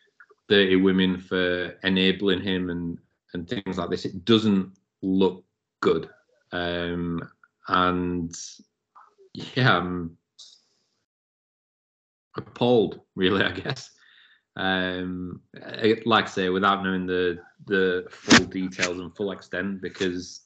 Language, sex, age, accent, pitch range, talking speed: English, male, 30-49, British, 90-100 Hz, 105 wpm